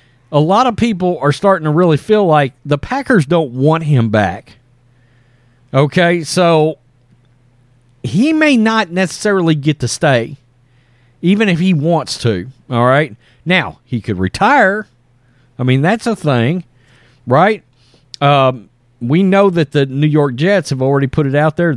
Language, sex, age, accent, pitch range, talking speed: English, male, 40-59, American, 125-180 Hz, 155 wpm